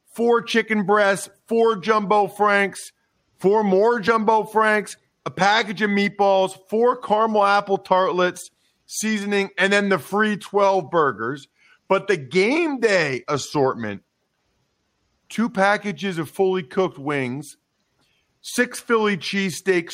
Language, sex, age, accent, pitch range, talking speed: English, male, 40-59, American, 170-210 Hz, 115 wpm